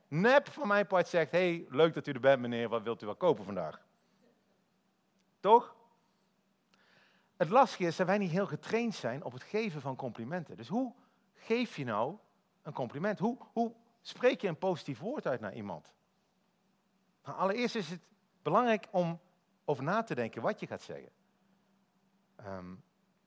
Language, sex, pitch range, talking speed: Dutch, male, 155-210 Hz, 170 wpm